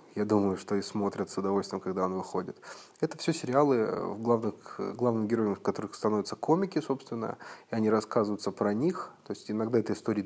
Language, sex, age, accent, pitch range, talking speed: Russian, male, 20-39, native, 105-130 Hz, 175 wpm